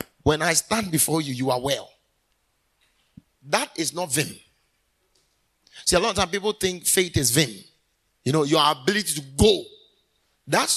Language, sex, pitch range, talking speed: English, male, 145-185 Hz, 160 wpm